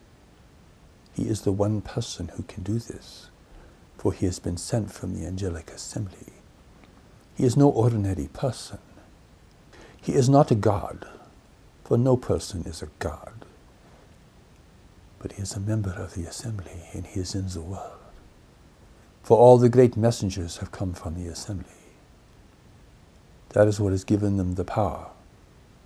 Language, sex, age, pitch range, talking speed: English, male, 60-79, 90-115 Hz, 155 wpm